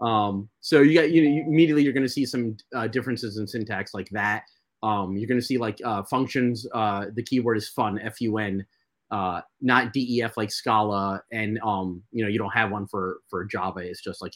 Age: 30-49